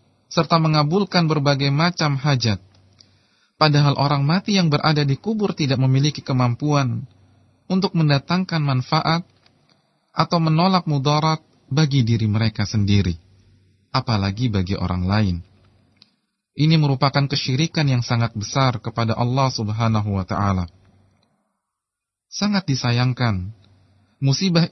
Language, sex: Indonesian, male